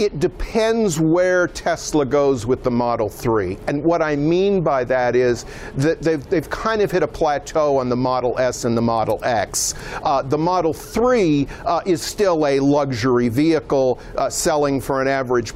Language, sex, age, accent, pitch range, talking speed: English, male, 50-69, American, 125-155 Hz, 180 wpm